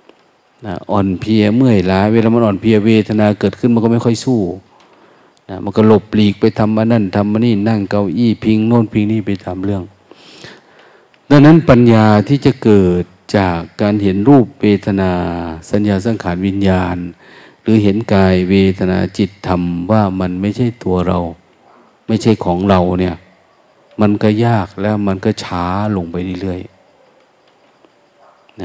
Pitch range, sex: 95-115 Hz, male